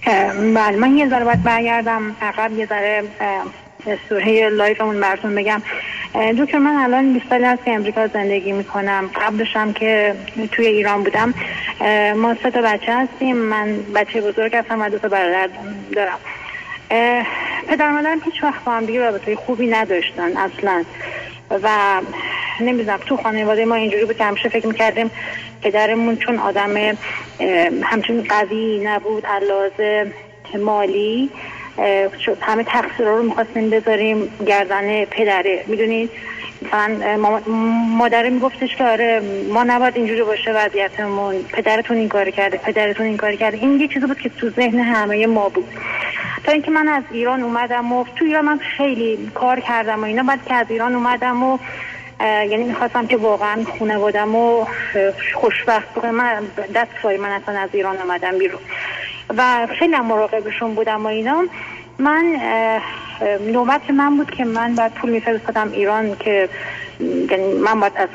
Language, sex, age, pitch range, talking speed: Persian, female, 30-49, 210-245 Hz, 140 wpm